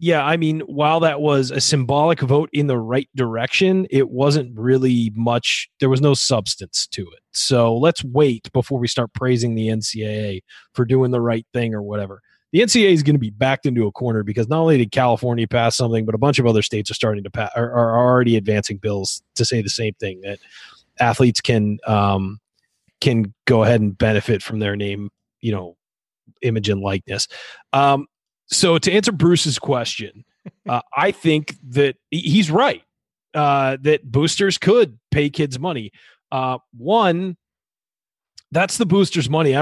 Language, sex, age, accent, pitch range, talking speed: English, male, 30-49, American, 115-155 Hz, 180 wpm